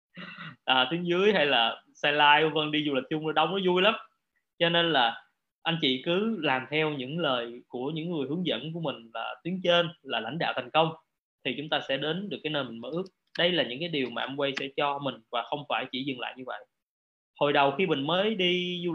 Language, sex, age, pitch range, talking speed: Vietnamese, male, 20-39, 135-170 Hz, 245 wpm